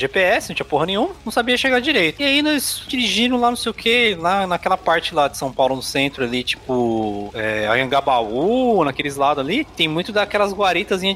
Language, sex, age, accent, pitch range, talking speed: Portuguese, male, 20-39, Brazilian, 170-230 Hz, 205 wpm